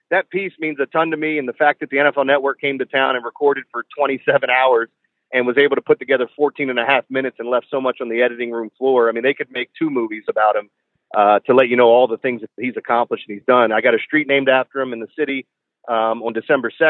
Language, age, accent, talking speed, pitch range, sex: English, 40-59, American, 275 wpm, 120-145 Hz, male